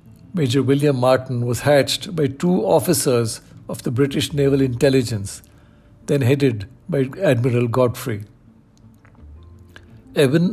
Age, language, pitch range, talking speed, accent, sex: 60-79, English, 110-140 Hz, 110 wpm, Indian, male